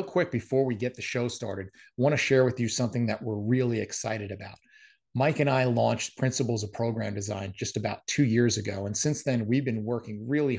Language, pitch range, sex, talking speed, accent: English, 110-130 Hz, male, 220 wpm, American